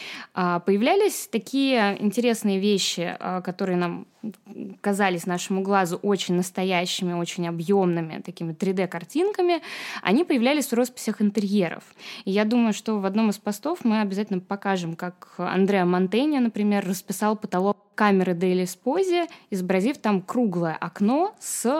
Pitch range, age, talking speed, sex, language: 190-245 Hz, 20-39, 125 wpm, female, Russian